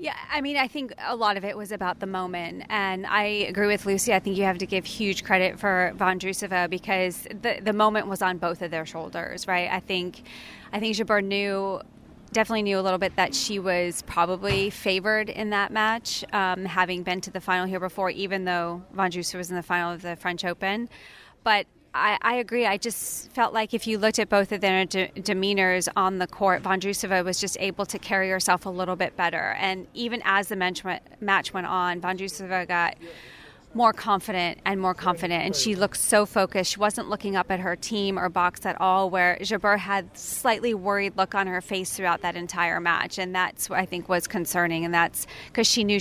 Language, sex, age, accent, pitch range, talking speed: English, female, 20-39, American, 180-205 Hz, 220 wpm